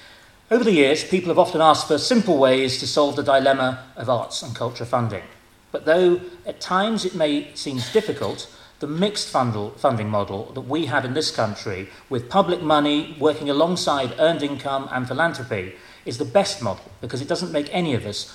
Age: 40-59